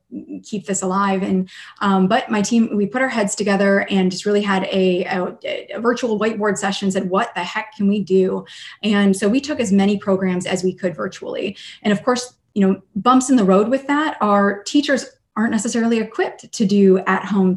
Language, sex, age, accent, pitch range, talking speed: English, female, 20-39, American, 185-215 Hz, 210 wpm